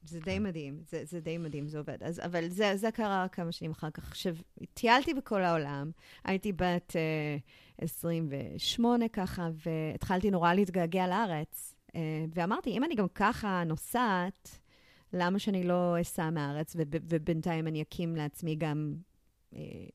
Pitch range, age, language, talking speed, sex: 160-195 Hz, 30-49, Hebrew, 155 wpm, female